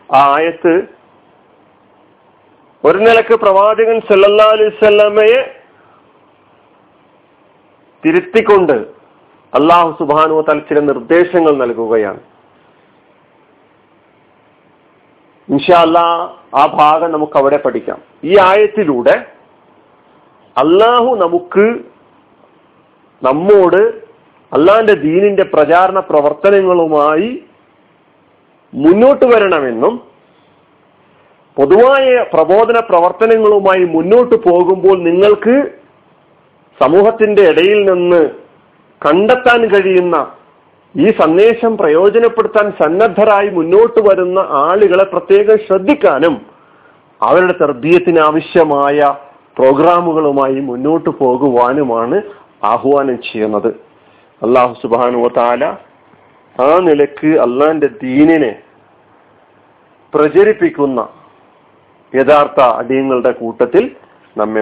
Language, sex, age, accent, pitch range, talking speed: Malayalam, male, 40-59, native, 145-210 Hz, 65 wpm